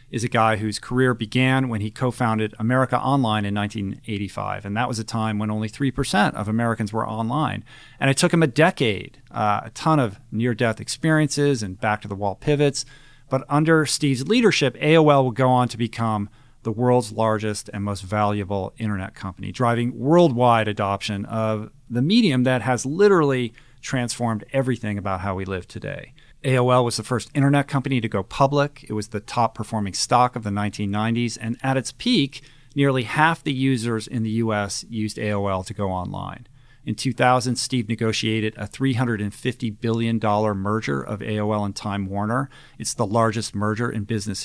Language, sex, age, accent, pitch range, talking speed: English, male, 40-59, American, 105-130 Hz, 170 wpm